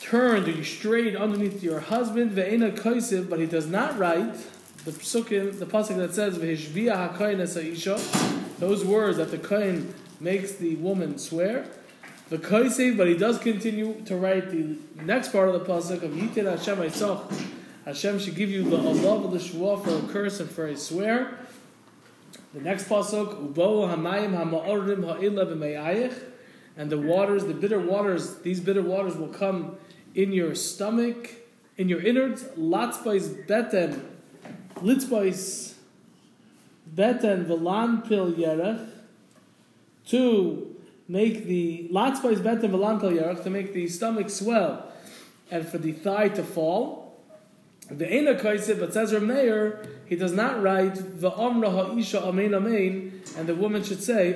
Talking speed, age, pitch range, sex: 135 wpm, 20-39, 175-215 Hz, male